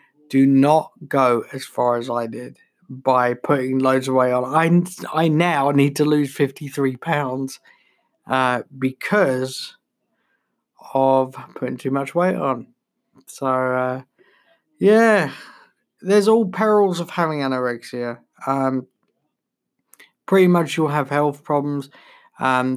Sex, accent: male, British